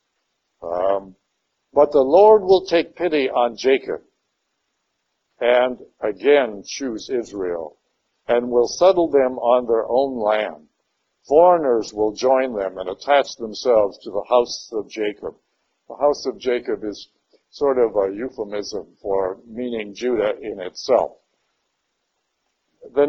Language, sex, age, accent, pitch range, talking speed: English, male, 60-79, American, 105-145 Hz, 125 wpm